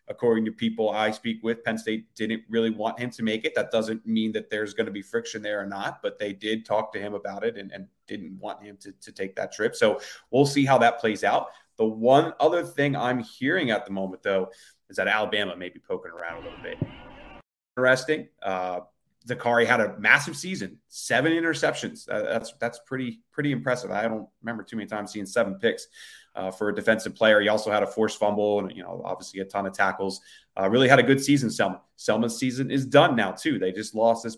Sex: male